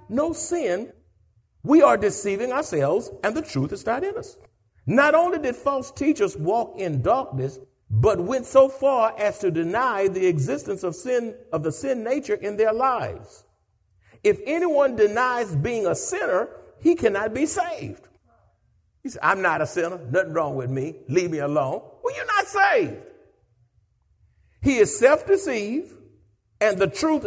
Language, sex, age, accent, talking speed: English, male, 50-69, American, 160 wpm